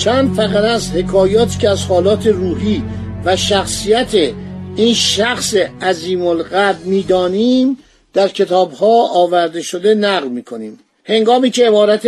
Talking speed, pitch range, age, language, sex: 120 wpm, 180-220 Hz, 50-69, Persian, male